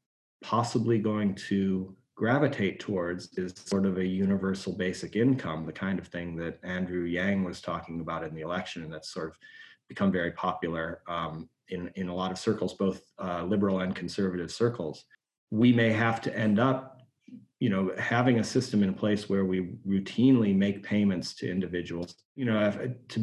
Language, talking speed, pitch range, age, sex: English, 175 wpm, 95-120 Hz, 30-49, male